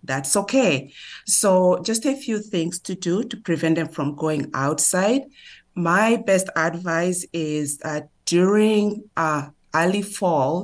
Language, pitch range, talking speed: English, 155-195 Hz, 135 wpm